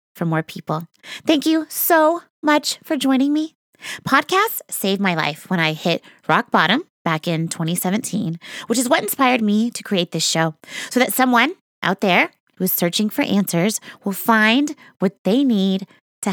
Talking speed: 170 wpm